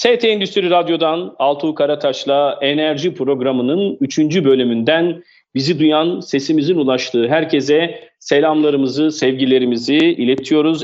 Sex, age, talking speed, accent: male, 40-59, 95 wpm, native